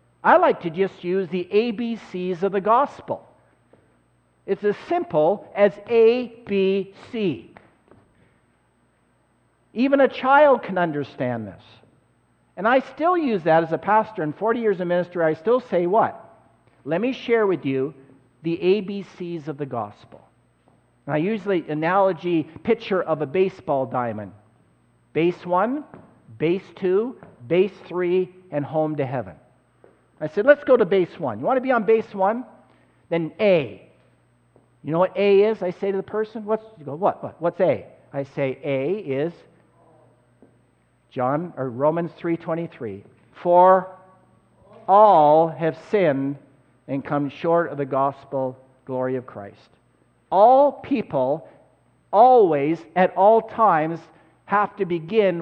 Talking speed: 145 wpm